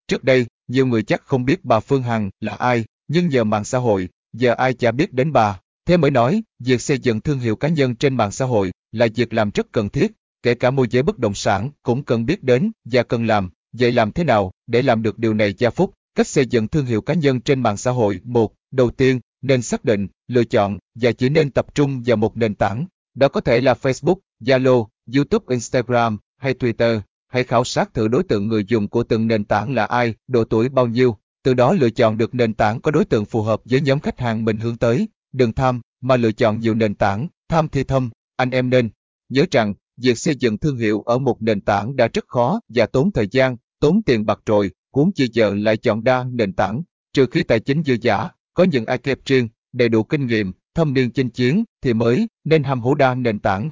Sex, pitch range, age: male, 115-135 Hz, 20-39